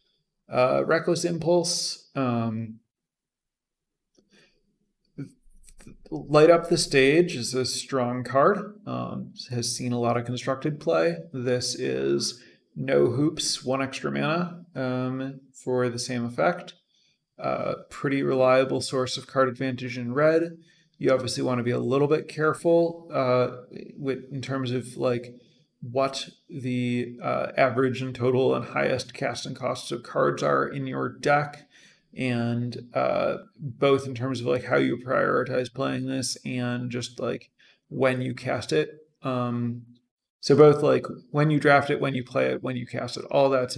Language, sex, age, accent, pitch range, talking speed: English, male, 30-49, American, 120-150 Hz, 150 wpm